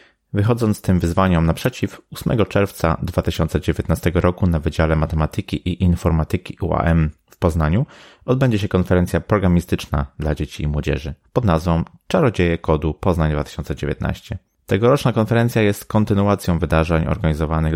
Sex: male